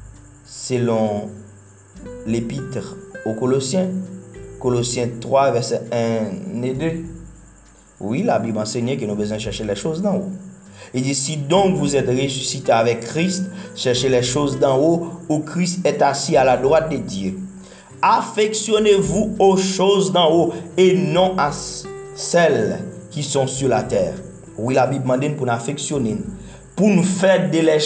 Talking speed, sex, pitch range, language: 155 wpm, male, 115-175 Hz, French